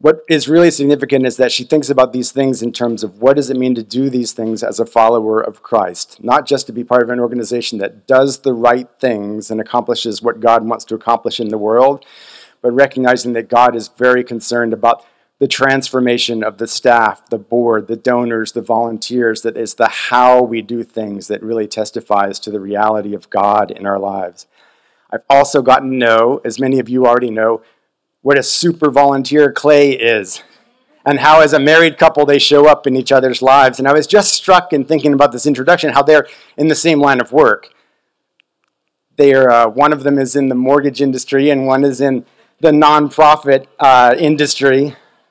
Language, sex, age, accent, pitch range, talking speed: English, male, 40-59, American, 115-145 Hz, 205 wpm